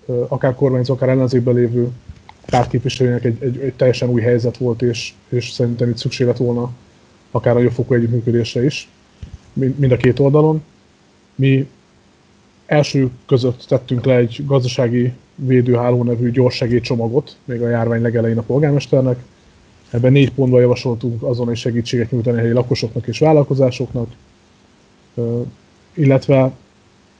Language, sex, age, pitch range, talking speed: Hungarian, male, 20-39, 120-135 Hz, 130 wpm